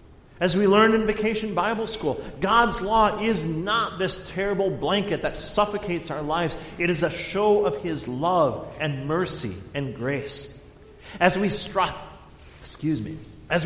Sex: male